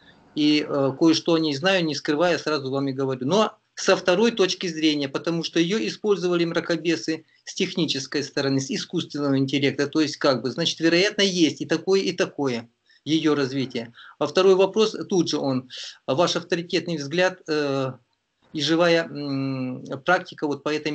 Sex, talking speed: male, 165 wpm